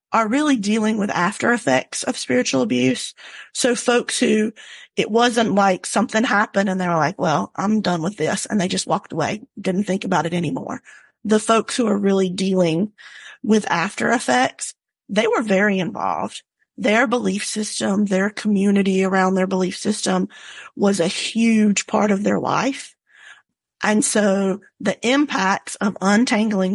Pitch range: 190-225 Hz